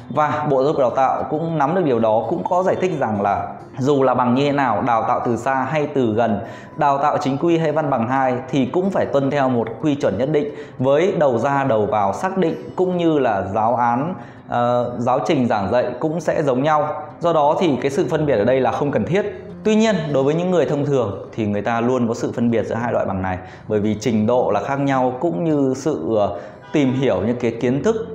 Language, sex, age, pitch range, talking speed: Vietnamese, male, 20-39, 115-155 Hz, 255 wpm